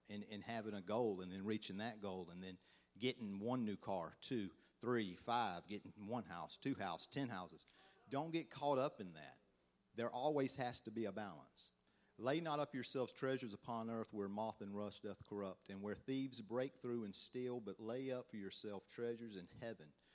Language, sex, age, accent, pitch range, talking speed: English, male, 50-69, American, 90-115 Hz, 200 wpm